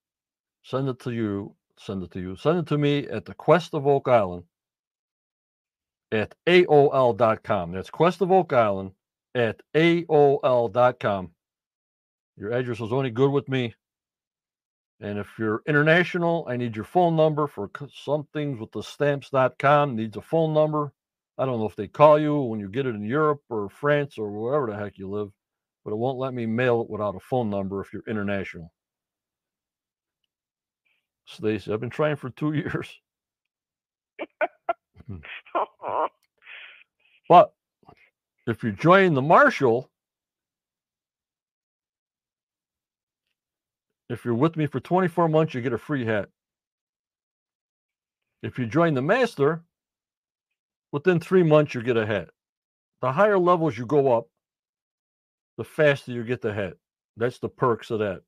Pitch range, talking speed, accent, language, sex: 105-150 Hz, 145 wpm, American, English, male